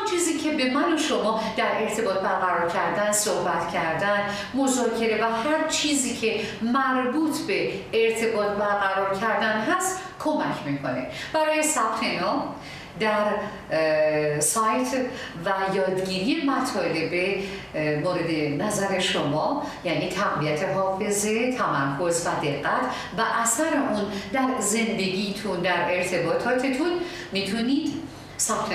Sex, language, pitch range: female, Persian, 175-265 Hz